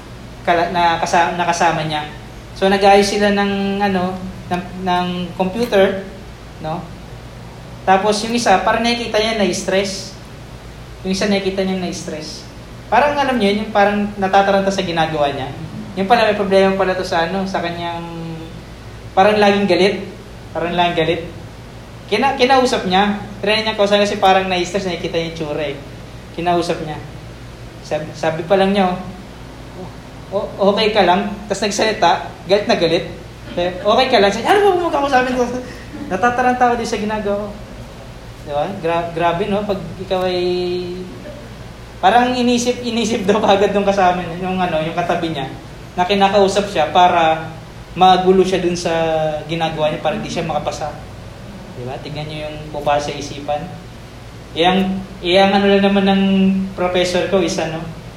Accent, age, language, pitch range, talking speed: native, 20-39, Filipino, 165-200 Hz, 160 wpm